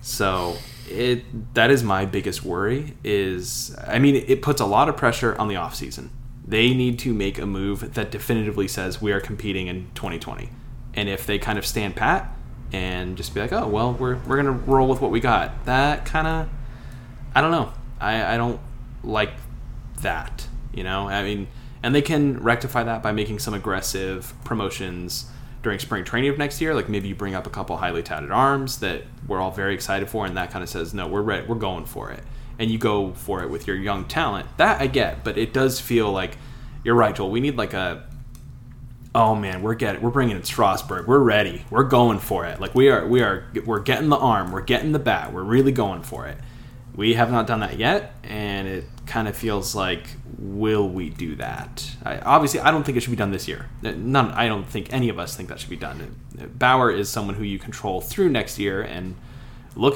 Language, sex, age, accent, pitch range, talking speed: English, male, 10-29, American, 100-125 Hz, 220 wpm